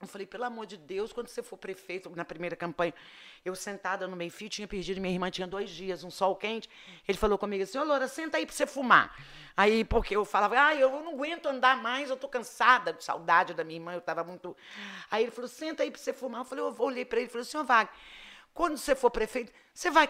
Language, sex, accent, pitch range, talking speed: Portuguese, female, Brazilian, 185-265 Hz, 255 wpm